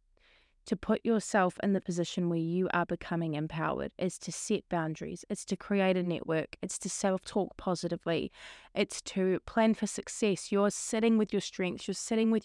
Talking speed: 180 wpm